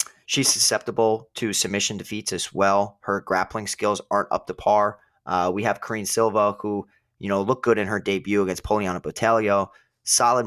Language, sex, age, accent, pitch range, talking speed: English, male, 20-39, American, 100-115 Hz, 180 wpm